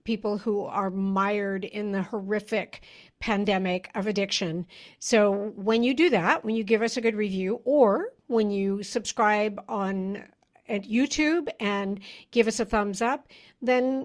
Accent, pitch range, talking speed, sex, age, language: American, 205-245 Hz, 155 wpm, female, 60-79, English